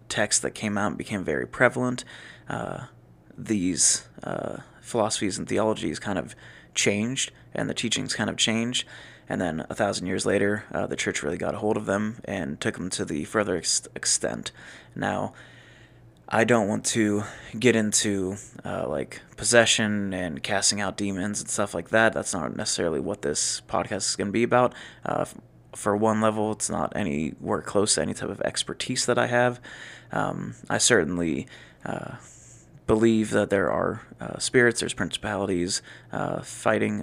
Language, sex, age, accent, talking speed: English, male, 20-39, American, 170 wpm